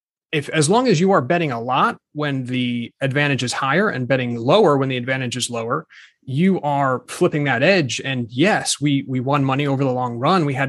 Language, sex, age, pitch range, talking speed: English, male, 30-49, 130-165 Hz, 220 wpm